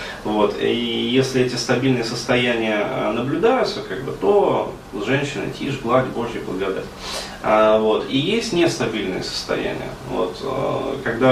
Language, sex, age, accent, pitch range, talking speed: Russian, male, 30-49, native, 115-135 Hz, 90 wpm